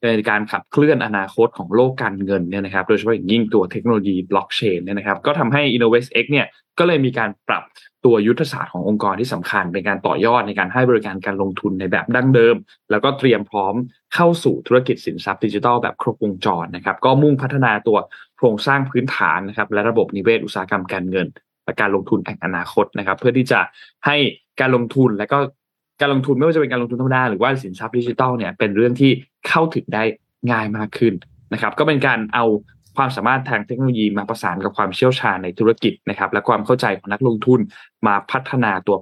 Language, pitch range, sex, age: Thai, 100-130 Hz, male, 20-39